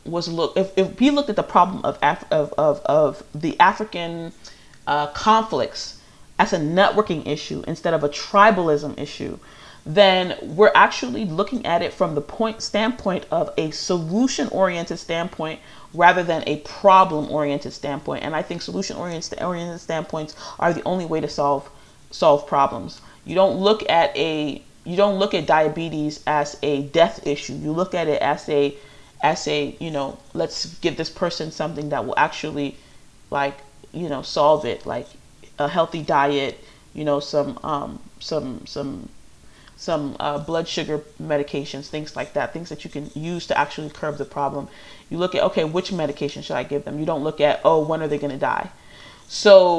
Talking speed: 175 wpm